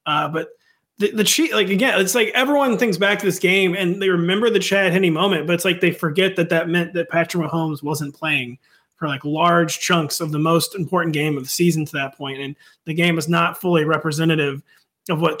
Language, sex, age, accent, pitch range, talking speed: English, male, 30-49, American, 160-195 Hz, 230 wpm